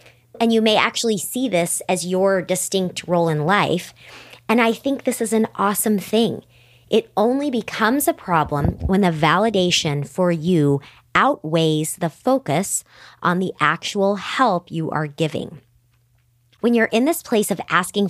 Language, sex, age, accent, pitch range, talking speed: English, male, 40-59, American, 160-220 Hz, 155 wpm